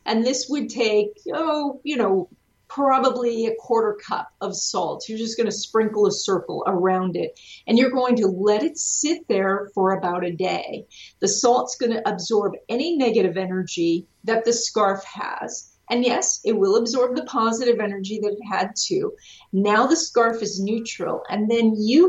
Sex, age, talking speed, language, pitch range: female, 40-59, 180 wpm, English, 195-245 Hz